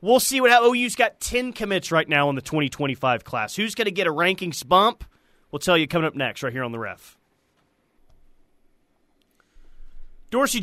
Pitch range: 140-190 Hz